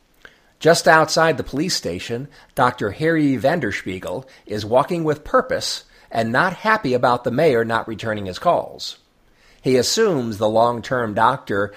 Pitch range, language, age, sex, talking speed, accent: 110-155 Hz, English, 50-69, male, 140 wpm, American